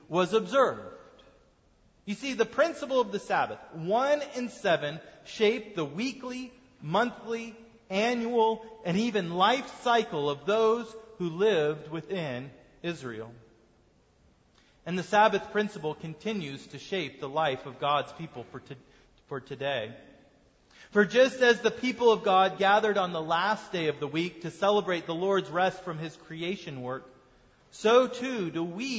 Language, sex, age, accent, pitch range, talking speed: English, male, 40-59, American, 165-230 Hz, 145 wpm